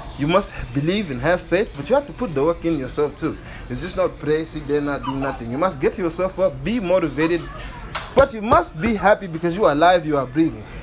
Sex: male